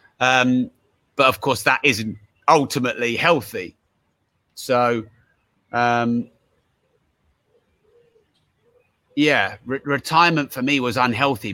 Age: 30-49